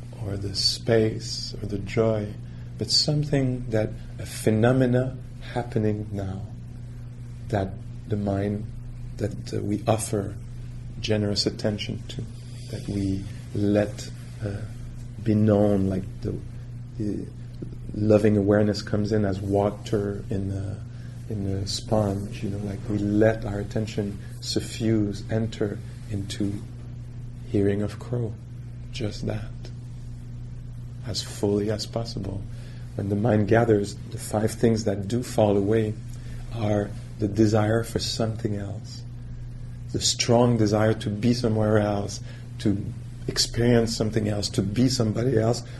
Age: 40-59